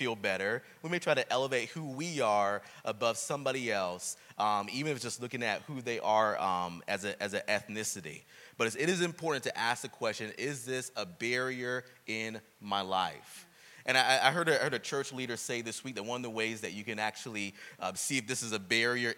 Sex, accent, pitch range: male, American, 115-150 Hz